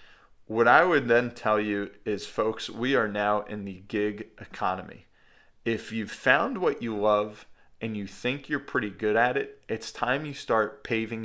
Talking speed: 180 wpm